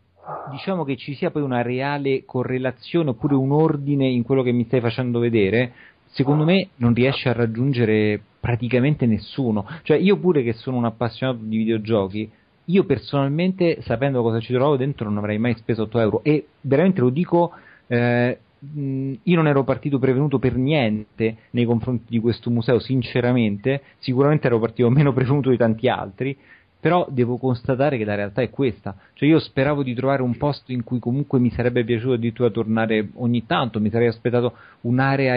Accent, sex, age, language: native, male, 40-59, Italian